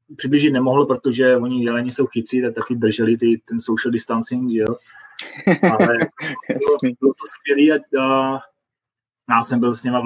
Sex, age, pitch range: male, 20-39, 115-135 Hz